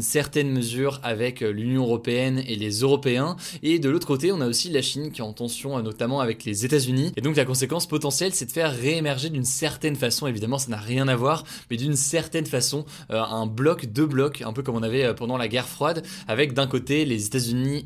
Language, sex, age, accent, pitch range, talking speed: French, male, 20-39, French, 120-150 Hz, 230 wpm